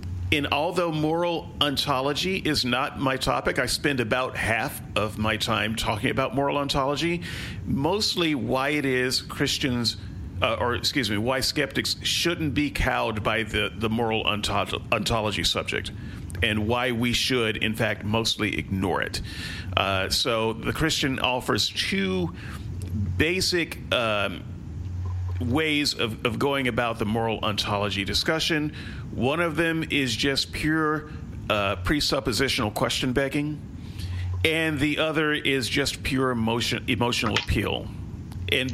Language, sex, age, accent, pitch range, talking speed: English, male, 40-59, American, 100-135 Hz, 130 wpm